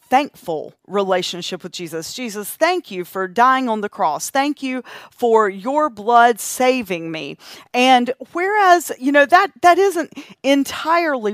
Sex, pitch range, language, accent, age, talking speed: female, 200-275 Hz, English, American, 40-59, 145 wpm